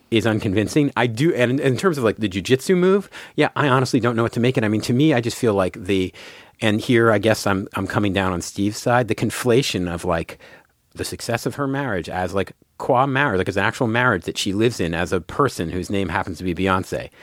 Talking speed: 255 wpm